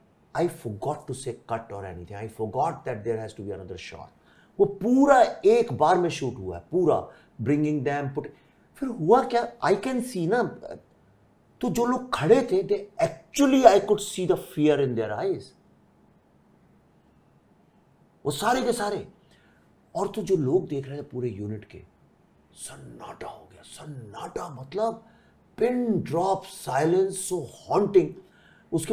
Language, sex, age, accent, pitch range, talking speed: English, male, 50-69, Indian, 120-195 Hz, 135 wpm